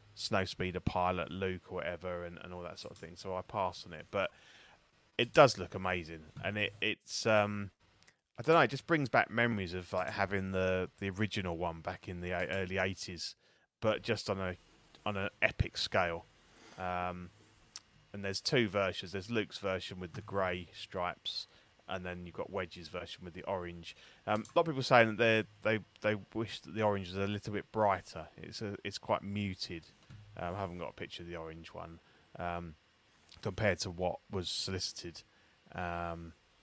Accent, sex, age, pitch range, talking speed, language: British, male, 20-39, 85-105 Hz, 195 wpm, English